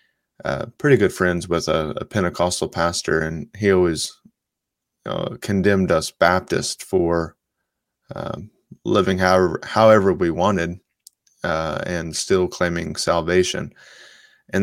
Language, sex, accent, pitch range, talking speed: English, male, American, 90-100 Hz, 120 wpm